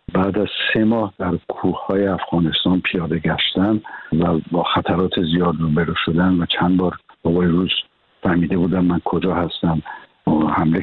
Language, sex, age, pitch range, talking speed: Persian, male, 60-79, 85-100 Hz, 150 wpm